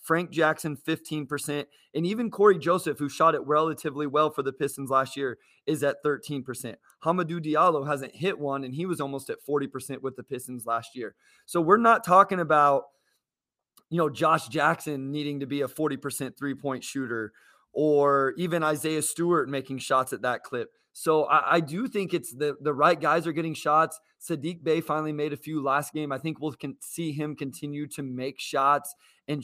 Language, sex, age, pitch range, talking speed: English, male, 20-39, 140-165 Hz, 190 wpm